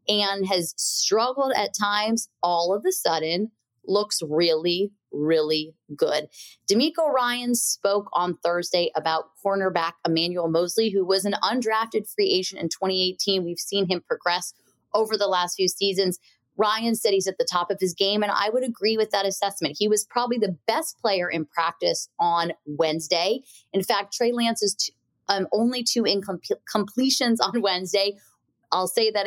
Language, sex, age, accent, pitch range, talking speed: English, female, 20-39, American, 170-215 Hz, 160 wpm